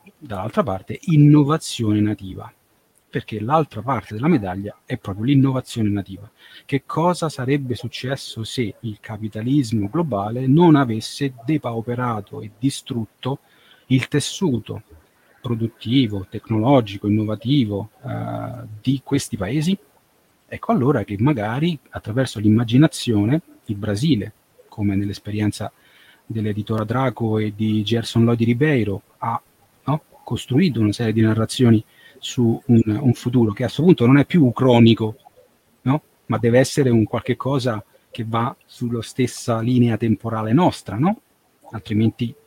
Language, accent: Italian, native